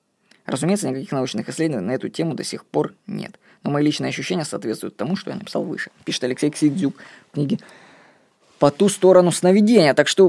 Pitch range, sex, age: 130-185 Hz, female, 20-39